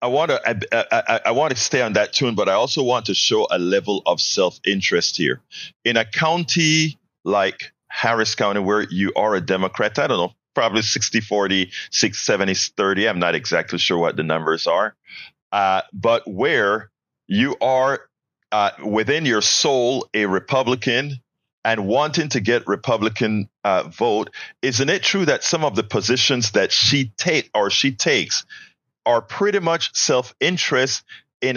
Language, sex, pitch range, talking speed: English, male, 105-135 Hz, 165 wpm